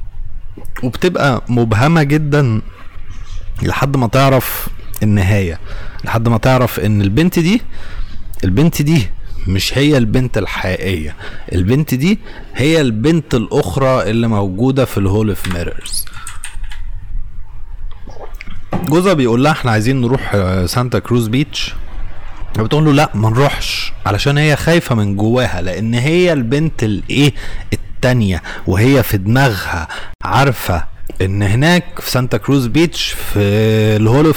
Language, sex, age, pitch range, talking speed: Arabic, male, 30-49, 95-130 Hz, 115 wpm